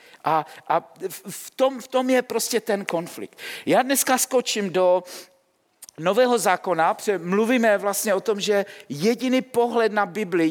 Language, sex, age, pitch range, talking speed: Czech, male, 50-69, 200-250 Hz, 150 wpm